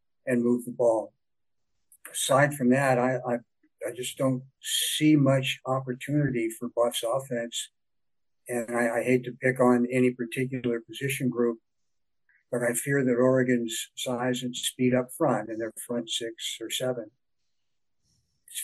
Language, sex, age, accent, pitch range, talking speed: English, male, 50-69, American, 120-135 Hz, 150 wpm